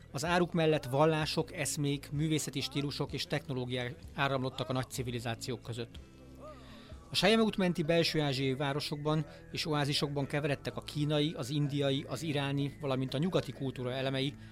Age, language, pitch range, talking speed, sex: 40-59, Hungarian, 125-155 Hz, 135 wpm, male